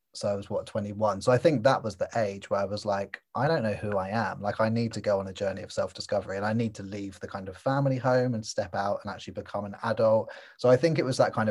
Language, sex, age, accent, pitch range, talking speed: English, male, 20-39, British, 100-115 Hz, 310 wpm